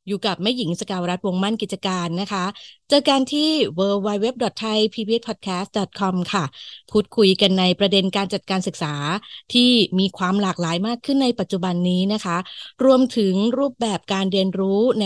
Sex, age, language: female, 20-39, Thai